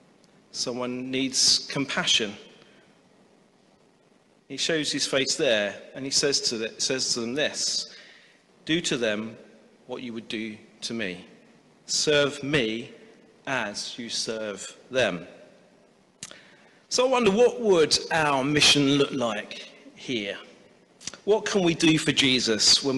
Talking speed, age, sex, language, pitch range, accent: 125 wpm, 40-59, male, English, 130-185 Hz, British